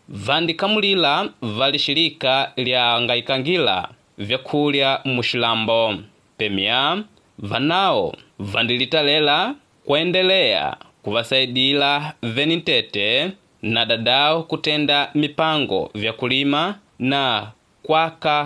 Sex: male